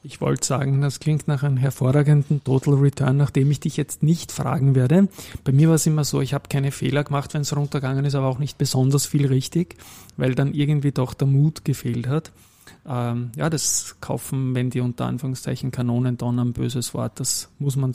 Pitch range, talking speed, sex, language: 125-150 Hz, 205 wpm, male, German